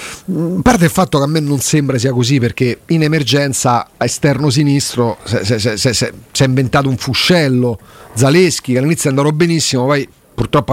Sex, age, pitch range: male, 40-59, 140-200 Hz